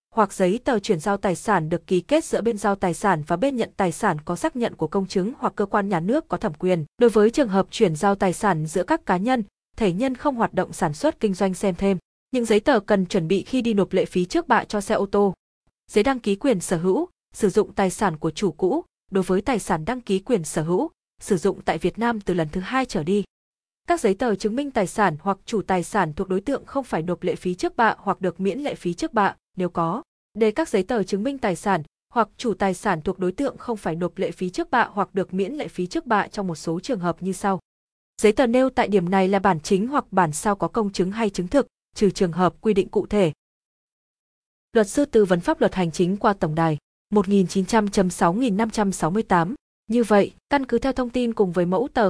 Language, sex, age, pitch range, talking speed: Vietnamese, female, 20-39, 185-225 Hz, 255 wpm